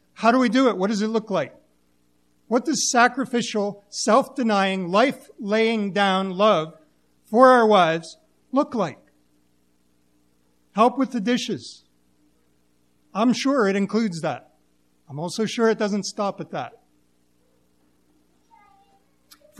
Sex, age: male, 50-69